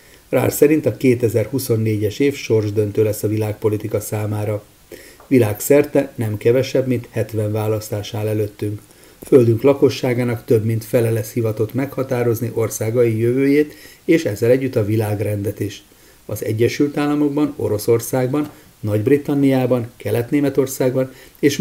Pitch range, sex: 110-130 Hz, male